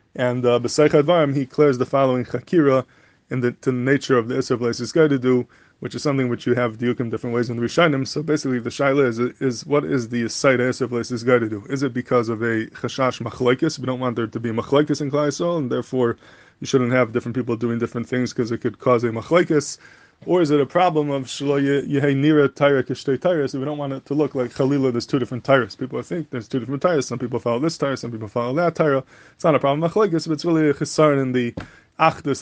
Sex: male